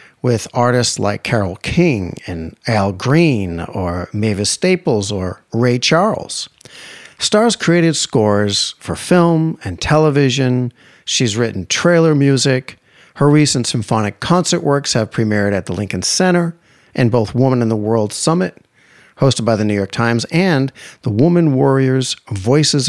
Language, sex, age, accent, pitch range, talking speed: English, male, 50-69, American, 105-140 Hz, 140 wpm